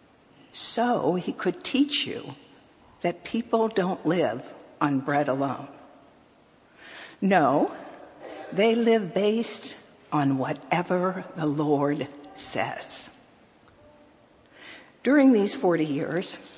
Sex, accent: female, American